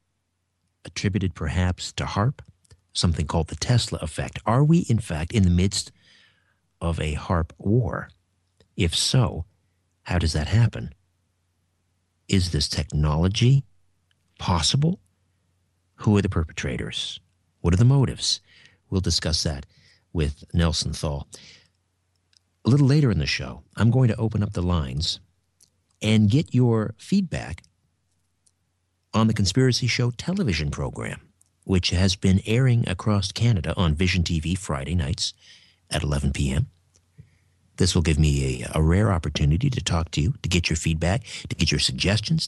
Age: 50-69